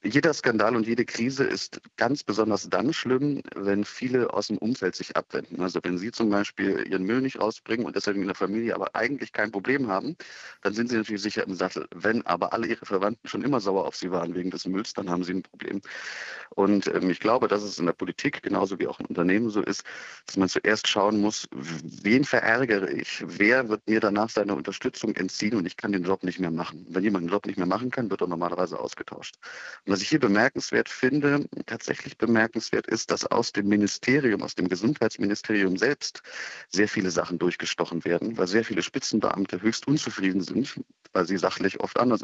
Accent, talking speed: German, 205 wpm